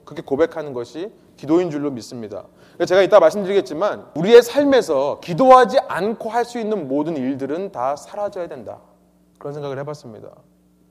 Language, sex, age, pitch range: Korean, male, 30-49, 155-230 Hz